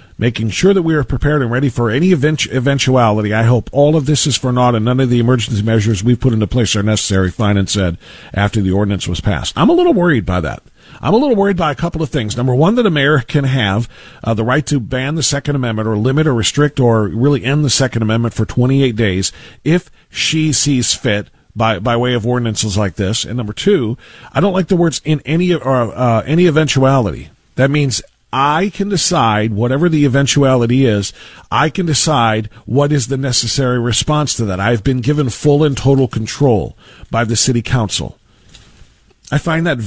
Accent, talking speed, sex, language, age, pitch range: American, 210 wpm, male, English, 50-69, 110-145 Hz